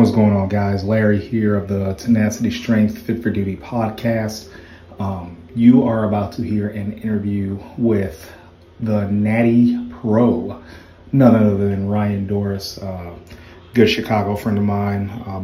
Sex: male